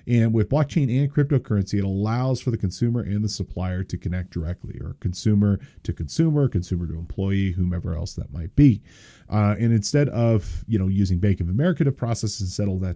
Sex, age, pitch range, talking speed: male, 40-59, 95-125 Hz, 200 wpm